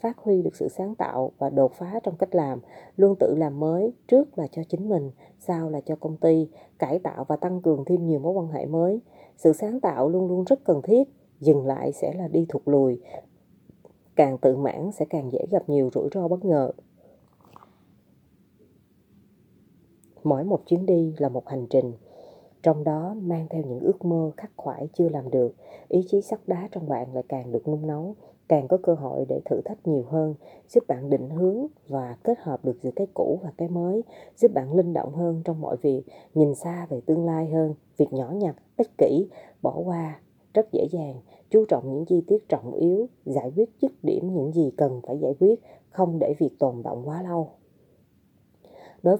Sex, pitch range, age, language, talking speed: female, 145-185 Hz, 30-49, Vietnamese, 205 wpm